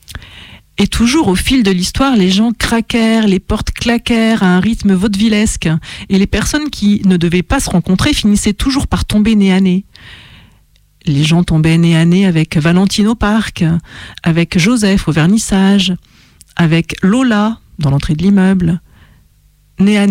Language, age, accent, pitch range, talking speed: French, 40-59, French, 170-225 Hz, 160 wpm